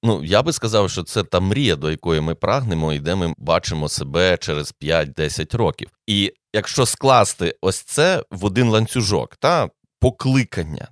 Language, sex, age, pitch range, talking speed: Ukrainian, male, 30-49, 75-115 Hz, 165 wpm